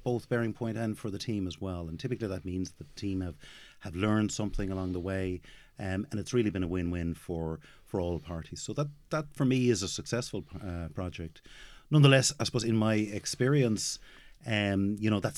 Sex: male